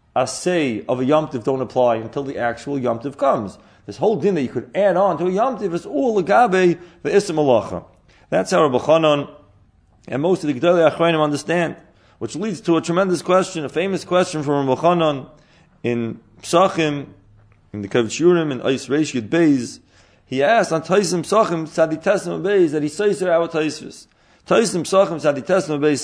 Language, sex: English, male